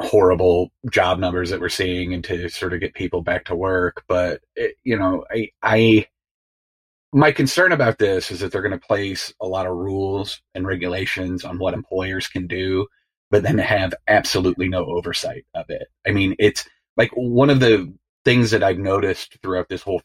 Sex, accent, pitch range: male, American, 90-110 Hz